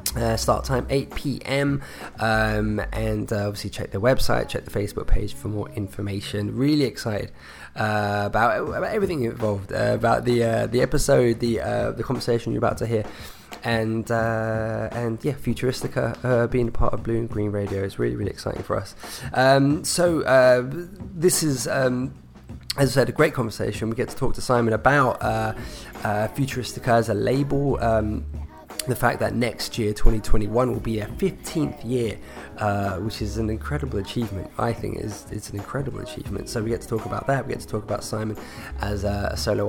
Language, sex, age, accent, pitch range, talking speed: English, male, 20-39, British, 105-125 Hz, 190 wpm